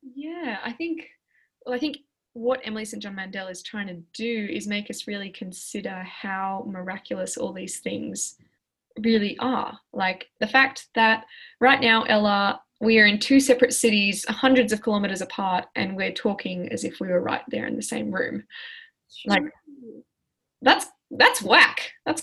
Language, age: English, 10-29